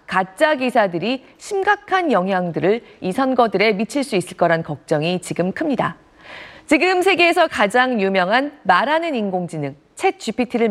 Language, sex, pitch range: Korean, female, 195-285 Hz